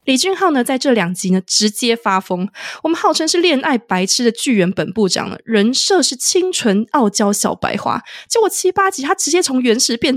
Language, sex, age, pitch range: Chinese, female, 20-39, 205-330 Hz